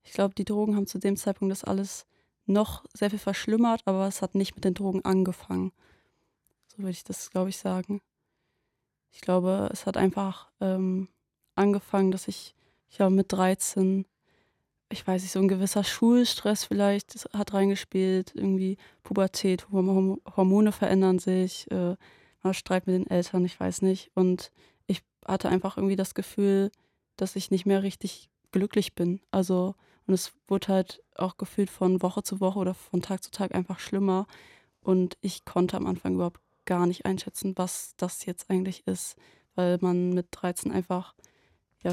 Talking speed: 170 wpm